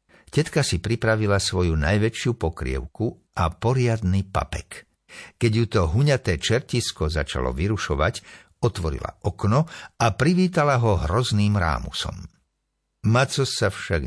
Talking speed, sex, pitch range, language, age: 110 wpm, male, 90-125 Hz, Slovak, 60-79